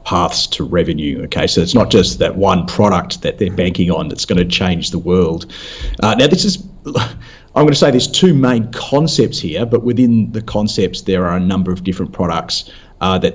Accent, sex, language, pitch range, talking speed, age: Australian, male, English, 95-120 Hz, 210 wpm, 40-59